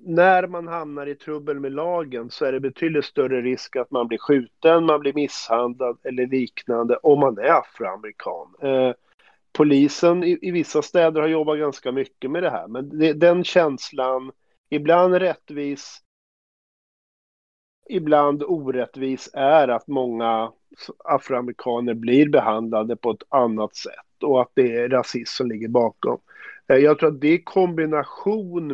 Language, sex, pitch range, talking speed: Swedish, male, 125-155 Hz, 140 wpm